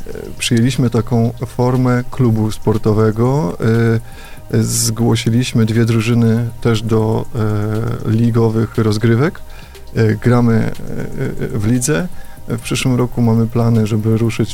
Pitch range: 110-120 Hz